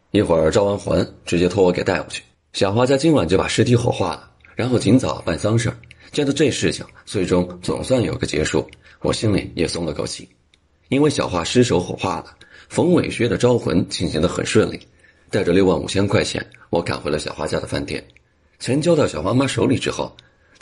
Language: Chinese